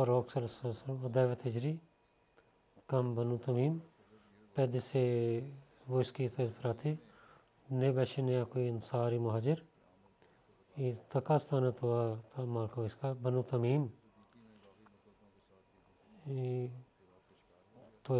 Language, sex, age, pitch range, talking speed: Bulgarian, male, 40-59, 115-135 Hz, 85 wpm